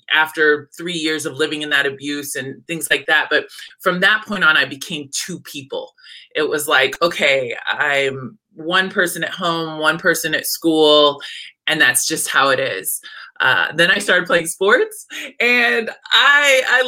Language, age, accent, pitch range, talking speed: English, 20-39, American, 150-200 Hz, 175 wpm